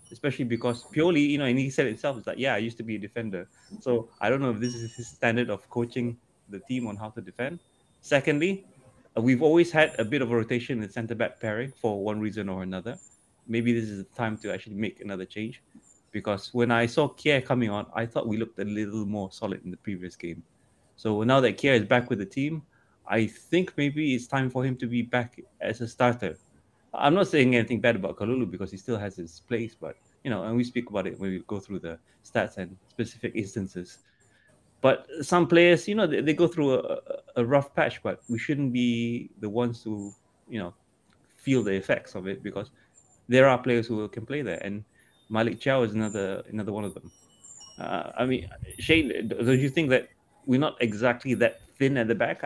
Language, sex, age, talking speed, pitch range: English, male, 30-49, 220 wpm, 105-130 Hz